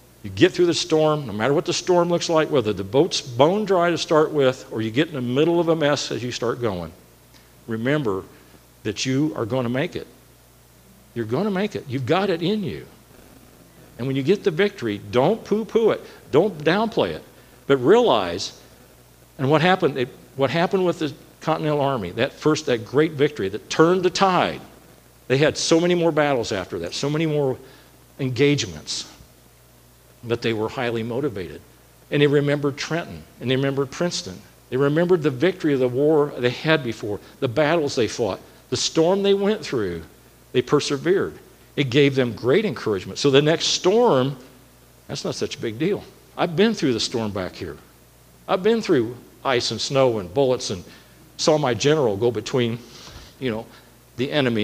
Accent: American